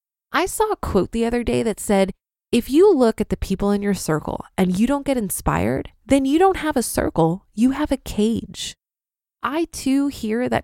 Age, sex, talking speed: 20-39, female, 210 wpm